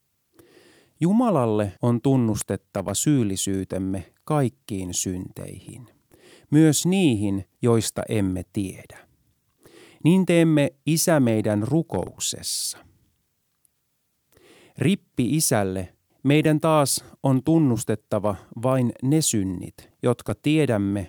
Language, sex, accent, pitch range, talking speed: Finnish, male, native, 100-150 Hz, 75 wpm